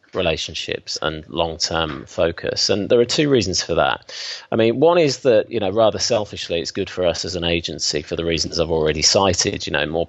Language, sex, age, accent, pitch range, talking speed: English, male, 30-49, British, 80-100 Hz, 215 wpm